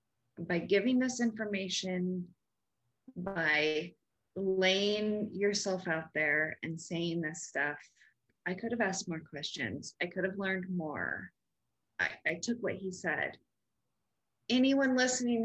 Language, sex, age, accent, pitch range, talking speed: English, female, 20-39, American, 165-200 Hz, 125 wpm